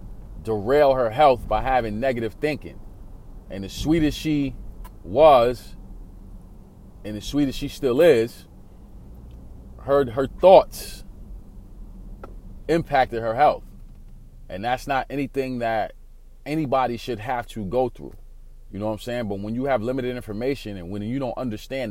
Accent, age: American, 30-49